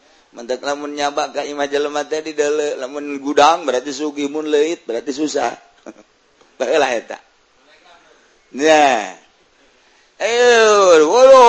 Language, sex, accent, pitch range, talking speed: Indonesian, male, native, 145-160 Hz, 85 wpm